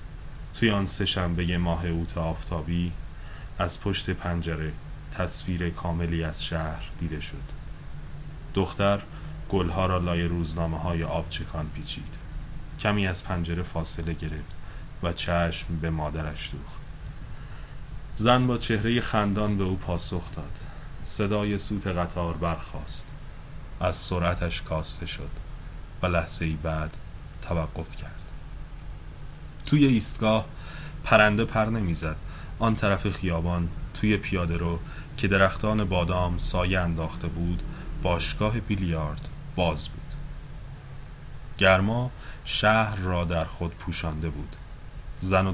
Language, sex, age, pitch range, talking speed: Persian, male, 30-49, 80-95 Hz, 110 wpm